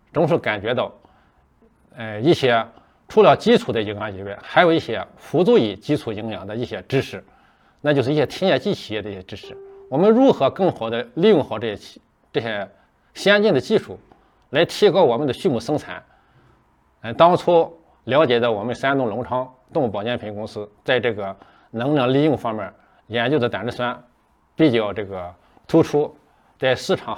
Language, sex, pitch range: Chinese, male, 105-140 Hz